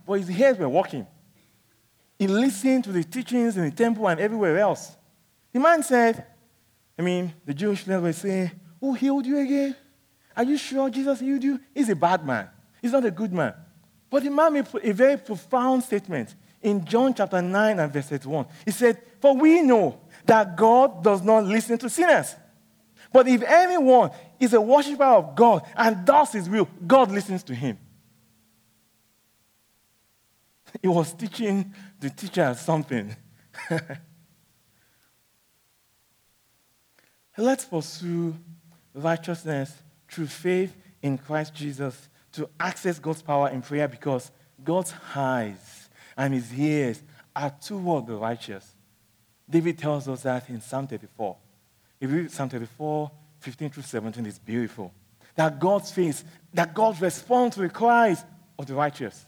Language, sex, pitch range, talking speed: English, male, 140-225 Hz, 145 wpm